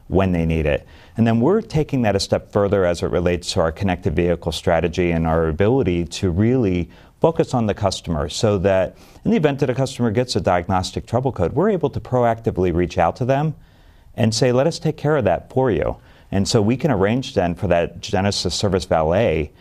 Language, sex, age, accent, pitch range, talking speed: English, male, 50-69, American, 90-120 Hz, 215 wpm